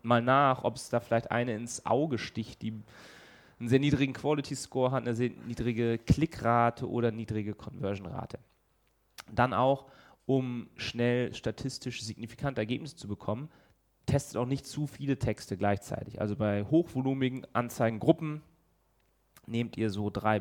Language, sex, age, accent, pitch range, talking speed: German, male, 30-49, German, 110-130 Hz, 140 wpm